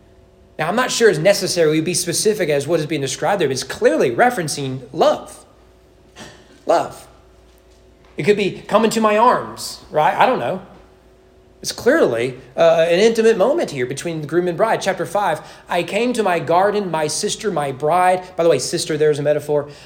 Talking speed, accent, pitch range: 185 wpm, American, 140-195 Hz